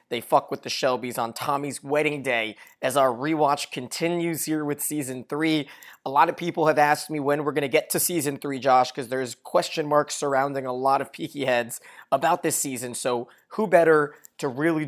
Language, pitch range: English, 125-150 Hz